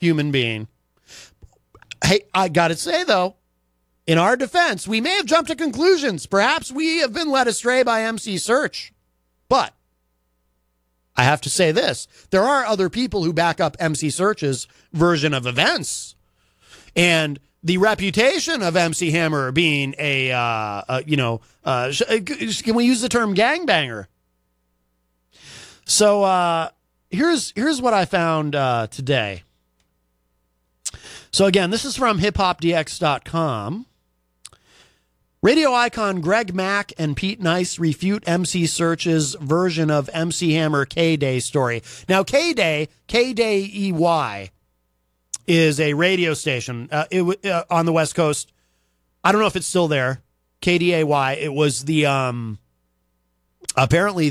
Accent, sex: American, male